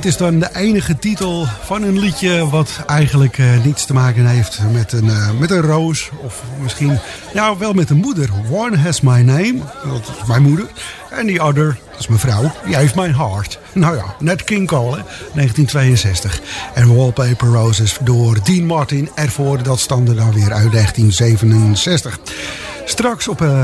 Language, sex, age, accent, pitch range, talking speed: English, male, 50-69, Dutch, 125-155 Hz, 175 wpm